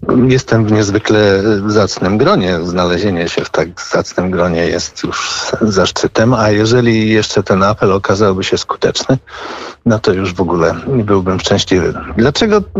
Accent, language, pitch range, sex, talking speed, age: native, Polish, 105-155 Hz, male, 145 wpm, 50-69